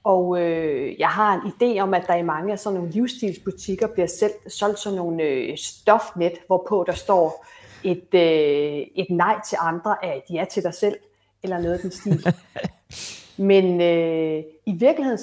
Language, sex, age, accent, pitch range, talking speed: Danish, female, 30-49, native, 180-230 Hz, 180 wpm